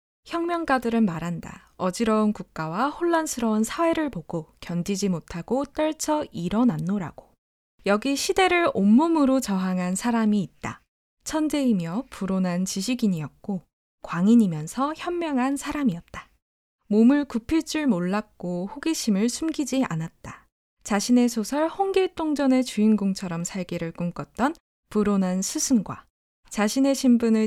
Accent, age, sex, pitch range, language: native, 20-39, female, 185-275 Hz, Korean